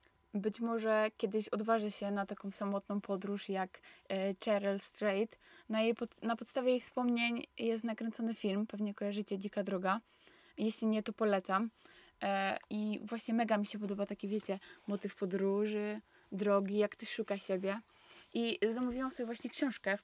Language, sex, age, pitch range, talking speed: Polish, female, 10-29, 205-235 Hz, 155 wpm